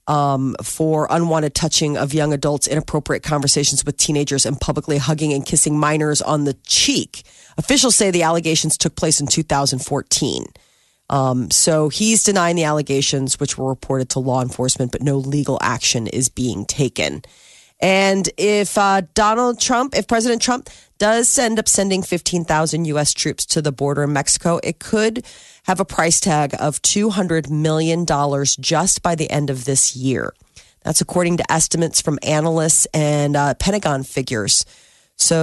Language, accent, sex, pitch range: Japanese, American, female, 140-180 Hz